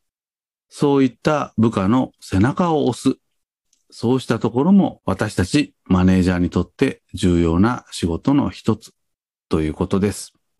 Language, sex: Japanese, male